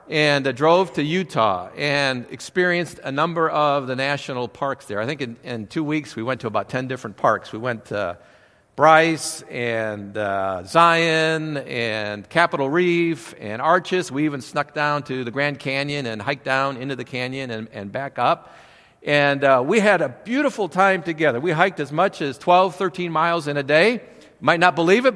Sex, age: male, 50-69